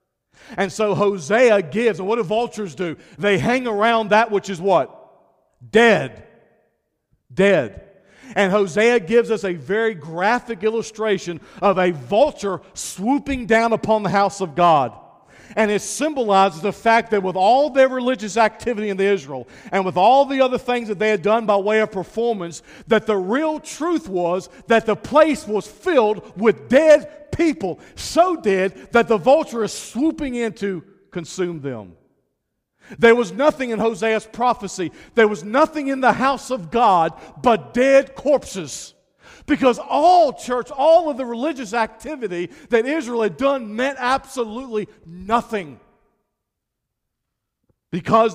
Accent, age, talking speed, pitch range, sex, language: American, 50-69, 150 wpm, 180-240 Hz, male, English